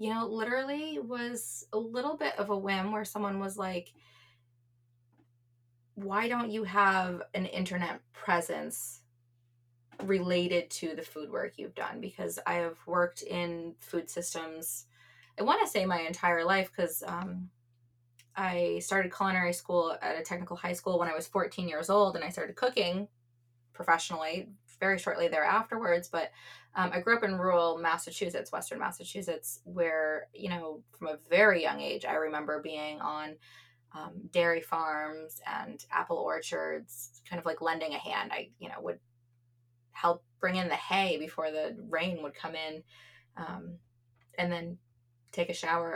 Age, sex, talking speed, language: 20-39, female, 160 wpm, English